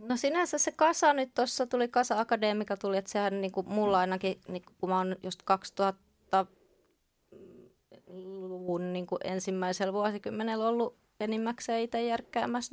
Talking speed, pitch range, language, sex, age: 125 wpm, 190-230 Hz, Finnish, female, 20-39